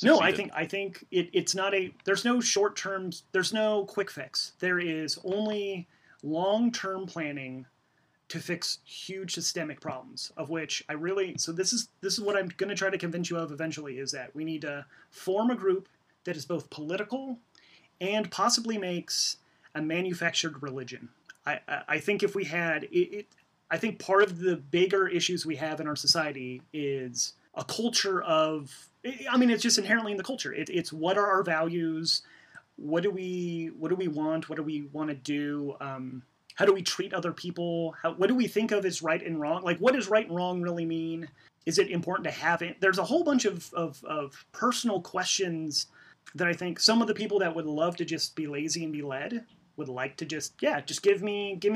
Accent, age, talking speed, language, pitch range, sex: American, 30-49, 210 wpm, English, 155-200 Hz, male